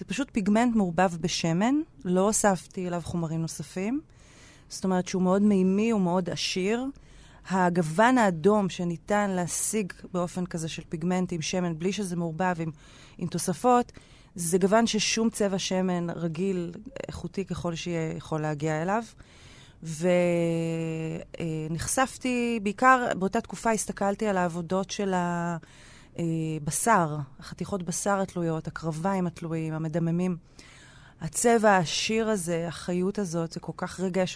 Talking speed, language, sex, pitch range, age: 125 wpm, Hebrew, female, 165-205 Hz, 30-49